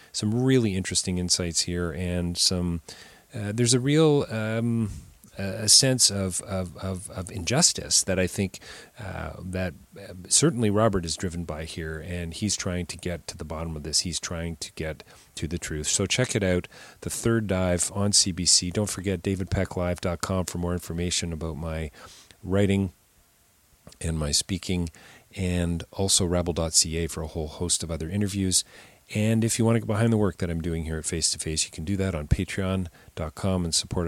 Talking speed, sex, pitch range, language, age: 185 wpm, male, 85-100 Hz, English, 40-59